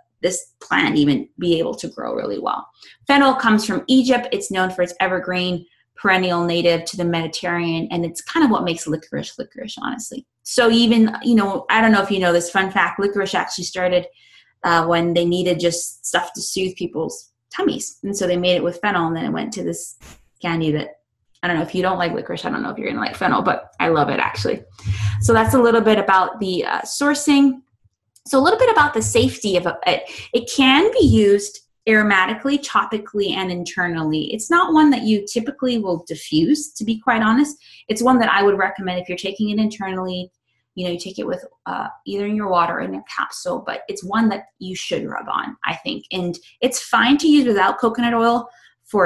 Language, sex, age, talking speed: English, female, 20-39, 215 wpm